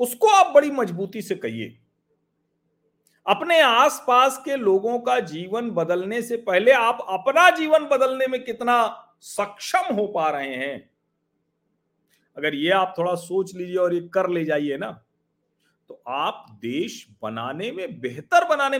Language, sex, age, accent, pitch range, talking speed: Hindi, male, 40-59, native, 150-240 Hz, 145 wpm